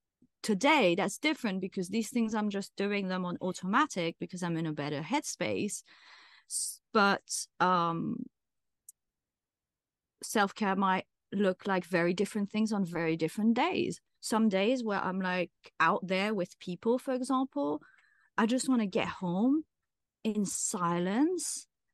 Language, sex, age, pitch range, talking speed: English, female, 30-49, 180-230 Hz, 135 wpm